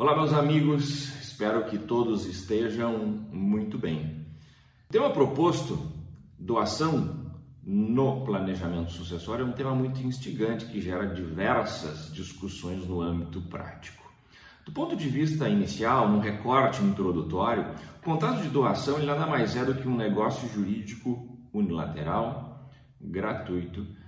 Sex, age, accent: male, 40-59, Brazilian